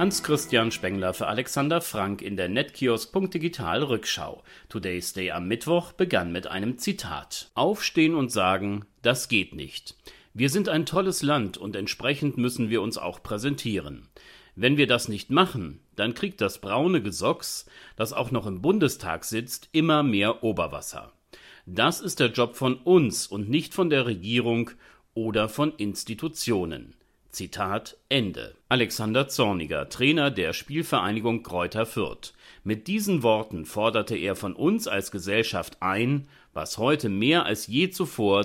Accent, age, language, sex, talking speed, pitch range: German, 40-59, German, male, 145 wpm, 100-145 Hz